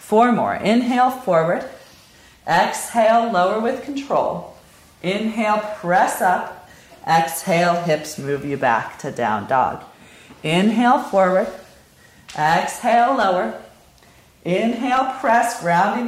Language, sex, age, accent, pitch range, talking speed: English, female, 40-59, American, 170-235 Hz, 95 wpm